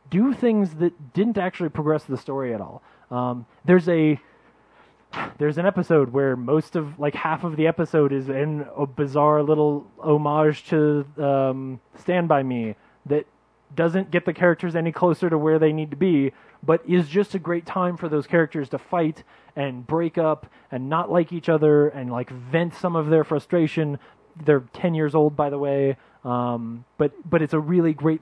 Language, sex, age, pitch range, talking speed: English, male, 20-39, 130-165 Hz, 195 wpm